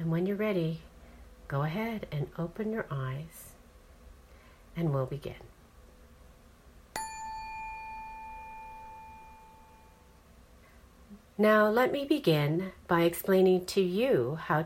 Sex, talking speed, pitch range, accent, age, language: female, 90 wpm, 145-230 Hz, American, 50-69, English